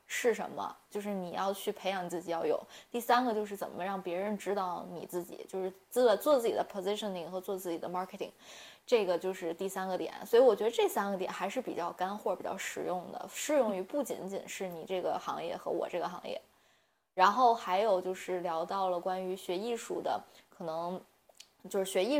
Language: Chinese